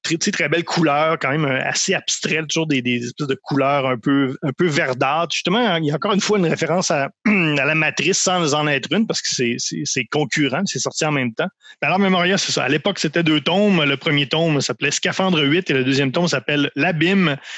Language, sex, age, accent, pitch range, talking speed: French, male, 30-49, Canadian, 135-165 Hz, 230 wpm